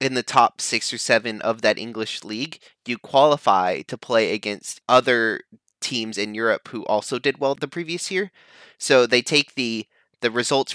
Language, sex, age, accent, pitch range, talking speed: English, male, 20-39, American, 100-120 Hz, 180 wpm